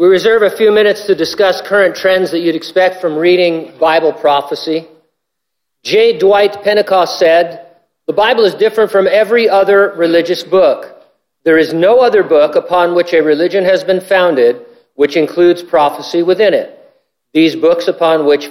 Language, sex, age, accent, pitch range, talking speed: English, male, 50-69, American, 150-210 Hz, 160 wpm